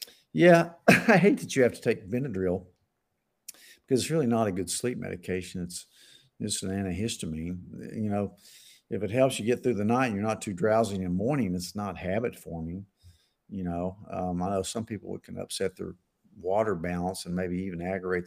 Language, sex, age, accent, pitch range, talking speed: English, male, 50-69, American, 90-110 Hz, 190 wpm